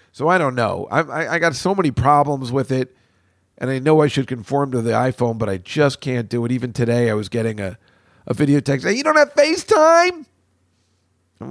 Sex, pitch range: male, 110-170 Hz